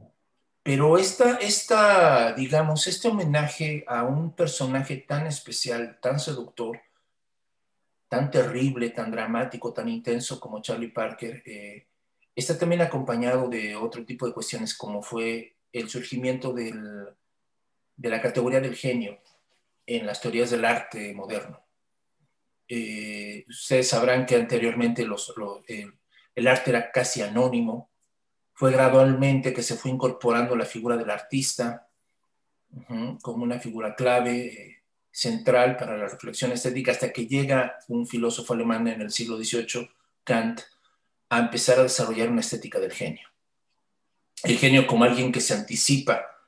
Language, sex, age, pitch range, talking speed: Spanish, male, 40-59, 115-130 Hz, 135 wpm